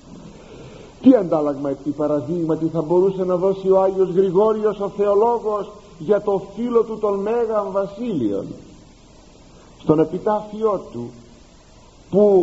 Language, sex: Greek, male